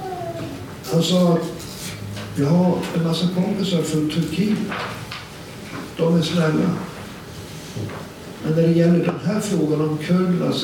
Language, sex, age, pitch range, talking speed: Swedish, male, 60-79, 150-185 Hz, 125 wpm